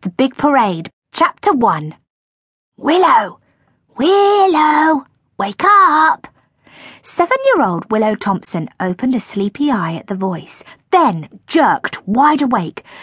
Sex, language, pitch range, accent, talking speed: female, English, 185-300 Hz, British, 105 wpm